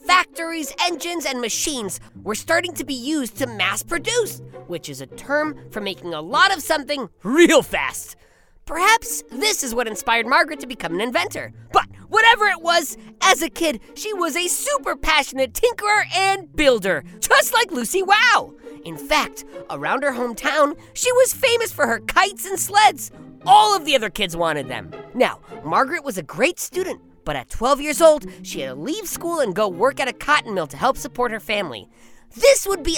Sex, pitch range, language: female, 205-345 Hz, English